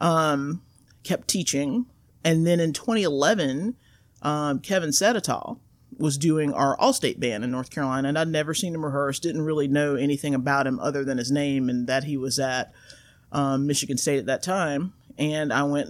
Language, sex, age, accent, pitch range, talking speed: English, male, 40-59, American, 135-155 Hz, 180 wpm